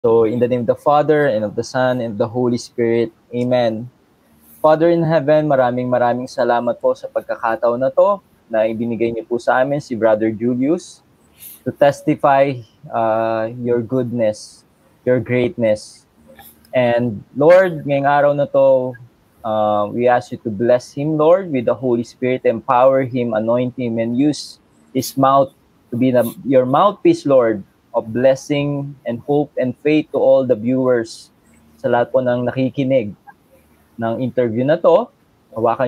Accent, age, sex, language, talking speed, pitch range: native, 20-39, male, Filipino, 160 wpm, 115-140 Hz